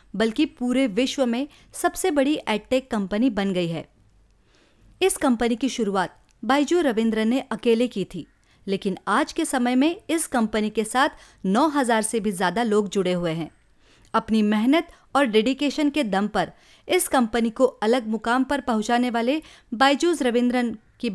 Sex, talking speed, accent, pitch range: female, 155 wpm, native, 210-285 Hz